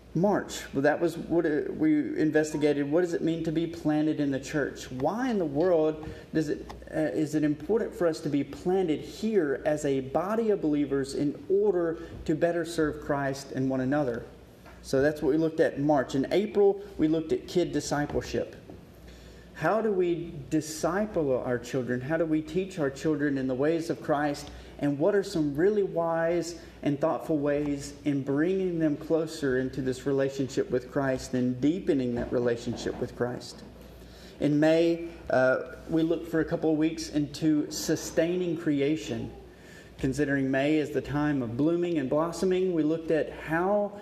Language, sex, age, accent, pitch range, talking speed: English, male, 40-59, American, 140-170 Hz, 175 wpm